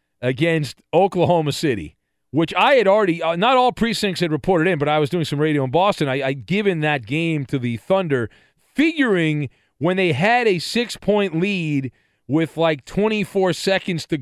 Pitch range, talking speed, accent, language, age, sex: 150-220 Hz, 170 wpm, American, English, 40-59, male